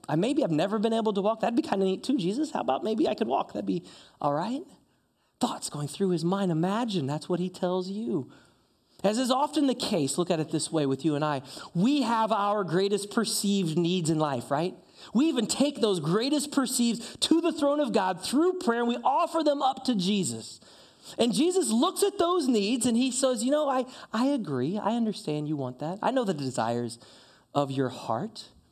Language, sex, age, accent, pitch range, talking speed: English, male, 30-49, American, 150-235 Hz, 220 wpm